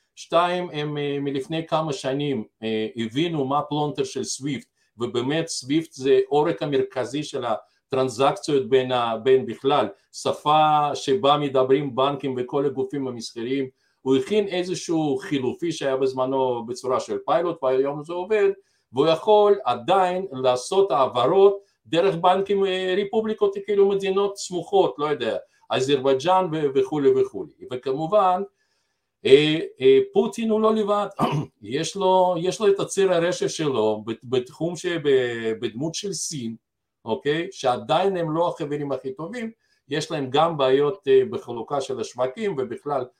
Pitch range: 130-185 Hz